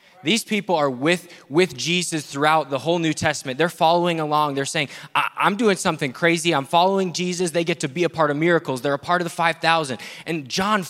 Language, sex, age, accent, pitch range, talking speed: English, male, 20-39, American, 135-180 Hz, 220 wpm